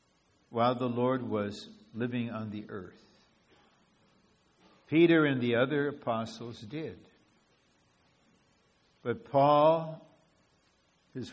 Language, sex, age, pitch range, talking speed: English, male, 60-79, 110-145 Hz, 90 wpm